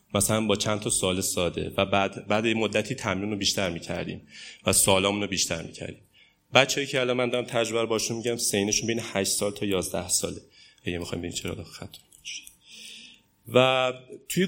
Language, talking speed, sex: Persian, 170 wpm, male